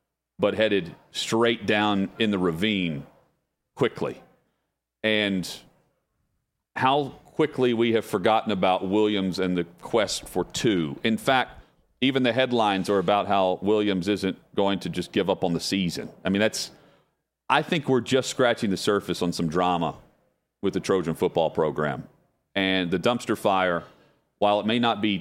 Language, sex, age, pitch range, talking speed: English, male, 40-59, 90-120 Hz, 155 wpm